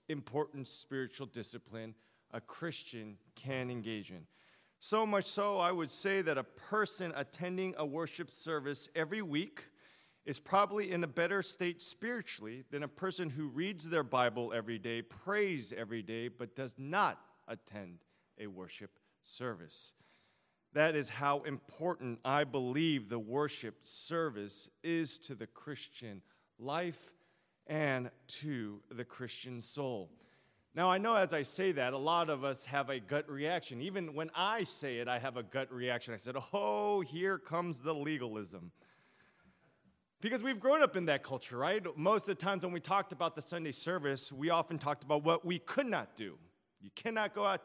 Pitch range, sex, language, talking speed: 125-175 Hz, male, English, 165 wpm